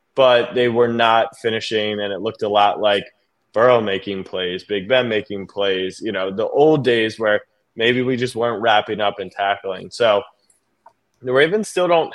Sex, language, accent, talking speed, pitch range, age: male, English, American, 185 wpm, 100-125 Hz, 20-39